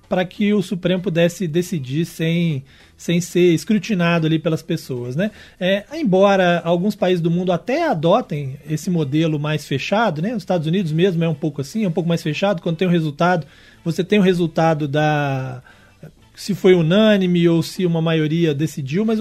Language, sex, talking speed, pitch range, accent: Portuguese, male, 185 wpm, 160-195 Hz, Brazilian